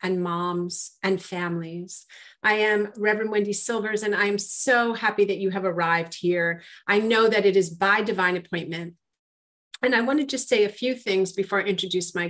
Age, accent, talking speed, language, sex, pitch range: 40-59, American, 190 wpm, English, female, 180-220 Hz